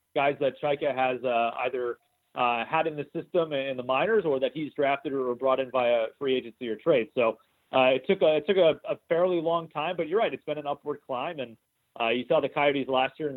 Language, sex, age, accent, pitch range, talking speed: English, male, 30-49, American, 125-155 Hz, 250 wpm